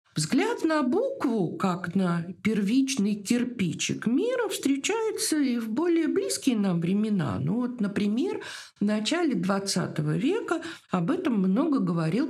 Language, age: Russian, 50-69